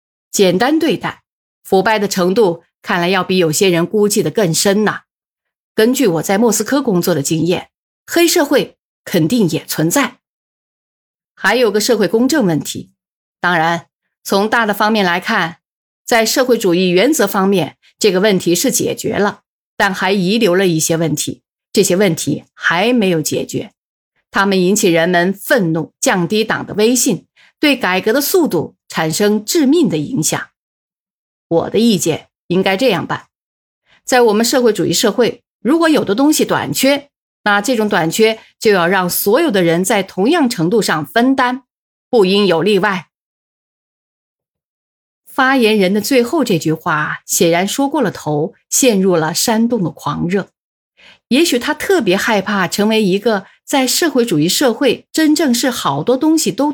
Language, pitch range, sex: Chinese, 175-245 Hz, female